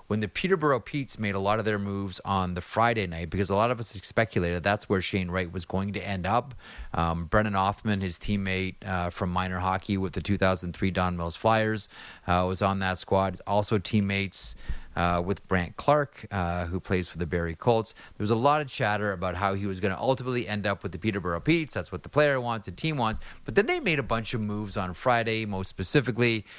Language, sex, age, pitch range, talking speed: English, male, 30-49, 95-115 Hz, 230 wpm